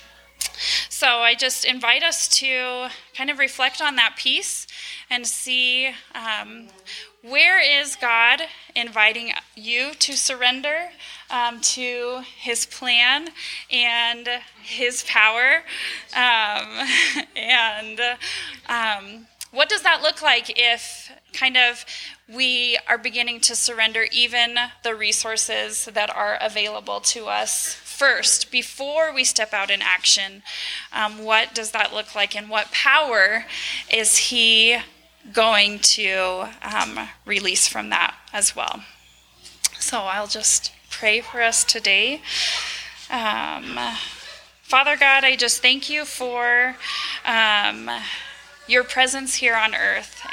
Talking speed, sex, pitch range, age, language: 120 wpm, female, 220-260 Hz, 10-29, English